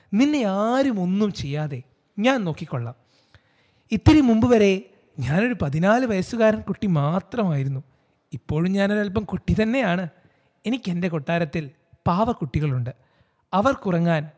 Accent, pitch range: native, 135-190 Hz